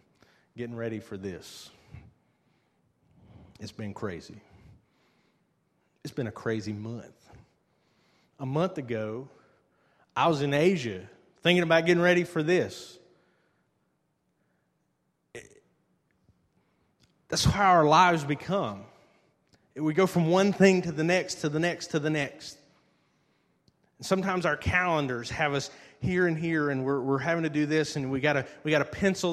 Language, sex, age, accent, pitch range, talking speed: English, male, 30-49, American, 140-180 Hz, 135 wpm